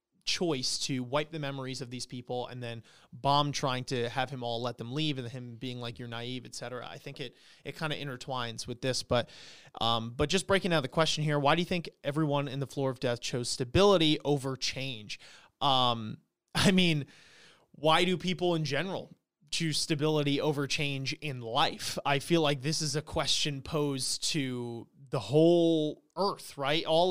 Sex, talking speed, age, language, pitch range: male, 195 wpm, 30-49, English, 135-160 Hz